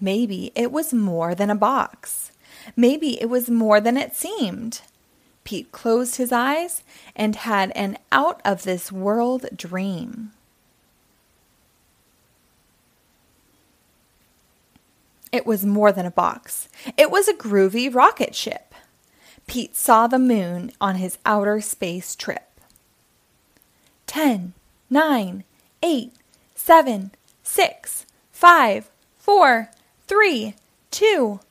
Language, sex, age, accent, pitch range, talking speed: English, female, 20-39, American, 200-265 Hz, 100 wpm